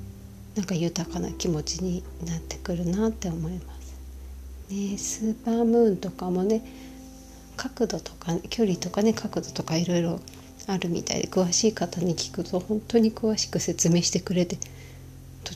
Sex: female